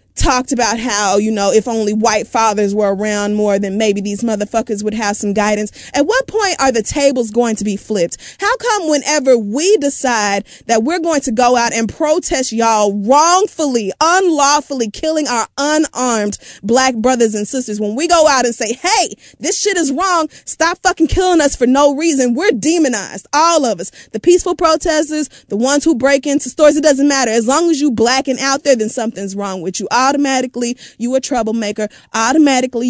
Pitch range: 220-285 Hz